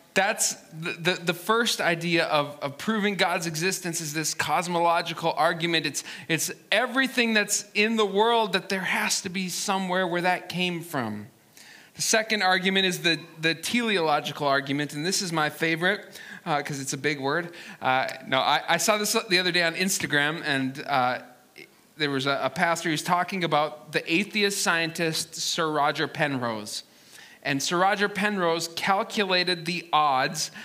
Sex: male